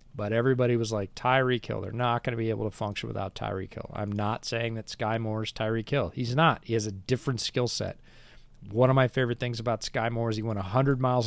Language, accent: English, American